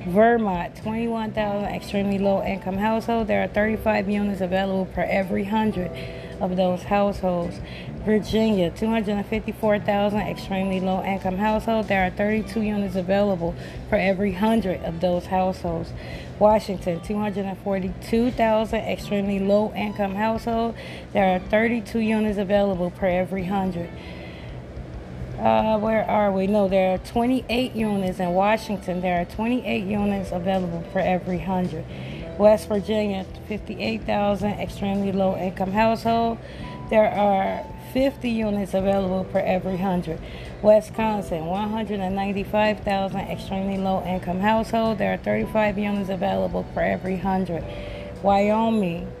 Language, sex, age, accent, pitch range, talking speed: English, female, 20-39, American, 185-215 Hz, 115 wpm